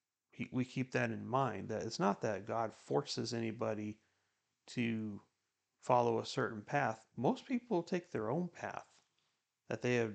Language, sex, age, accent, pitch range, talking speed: English, male, 30-49, American, 110-135 Hz, 155 wpm